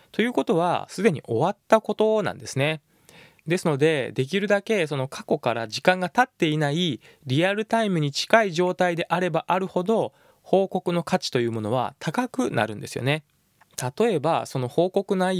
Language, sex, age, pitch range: Japanese, male, 20-39, 130-180 Hz